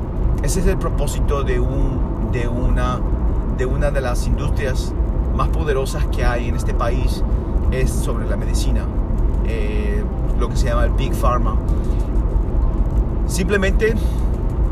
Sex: male